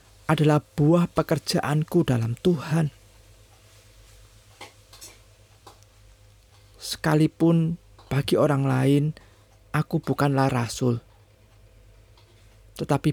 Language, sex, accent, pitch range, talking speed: Indonesian, male, native, 105-160 Hz, 60 wpm